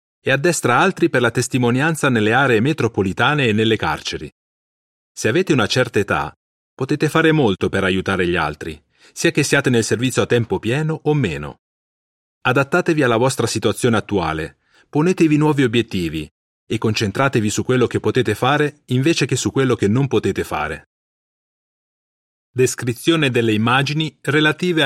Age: 40-59